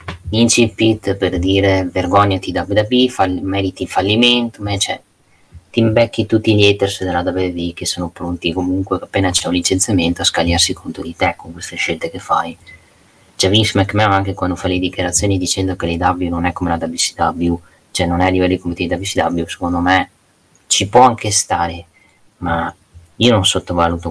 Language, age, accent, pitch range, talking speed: Italian, 20-39, native, 90-100 Hz, 175 wpm